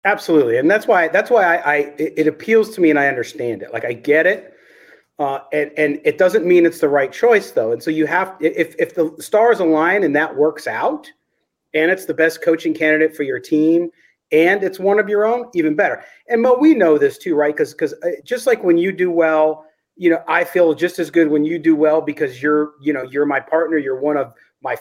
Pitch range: 145-225 Hz